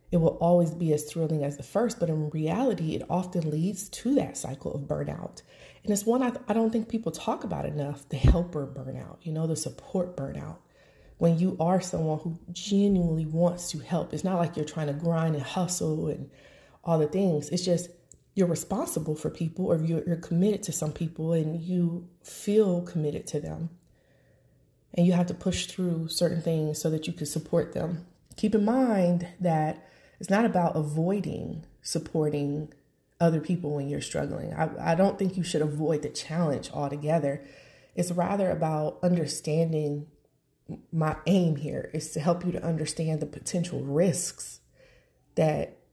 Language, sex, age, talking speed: English, female, 30-49, 175 wpm